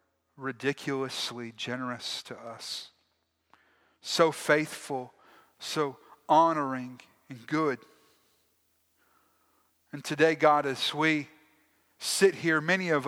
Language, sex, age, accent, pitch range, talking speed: English, male, 40-59, American, 120-165 Hz, 85 wpm